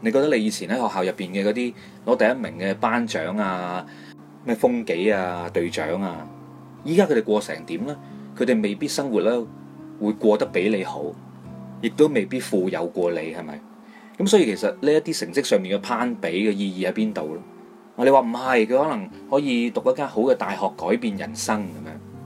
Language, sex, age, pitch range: Chinese, male, 20-39, 90-135 Hz